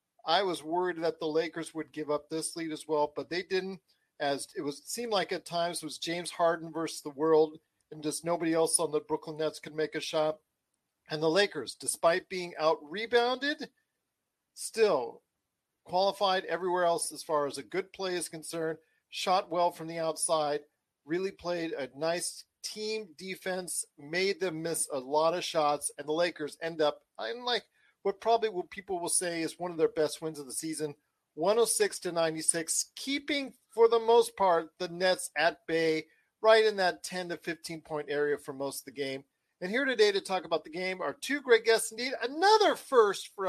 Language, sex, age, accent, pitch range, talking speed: English, male, 40-59, American, 160-225 Hz, 195 wpm